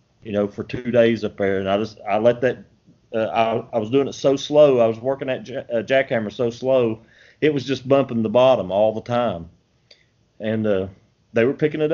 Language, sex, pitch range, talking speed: English, male, 105-130 Hz, 225 wpm